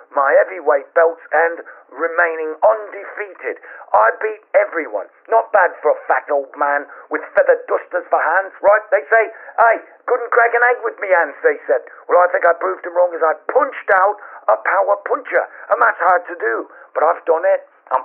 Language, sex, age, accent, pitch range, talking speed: English, male, 50-69, British, 150-225 Hz, 195 wpm